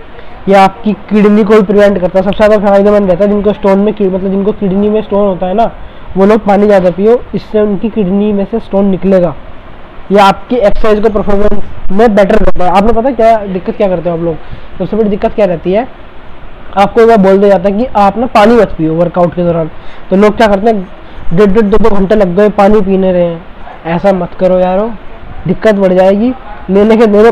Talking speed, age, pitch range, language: 220 wpm, 20-39, 185-215 Hz, Hindi